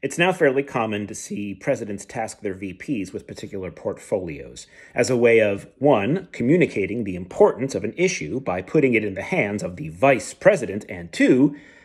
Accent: American